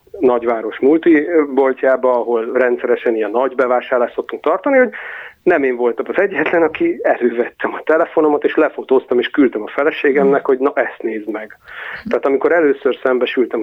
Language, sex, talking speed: Hungarian, male, 150 wpm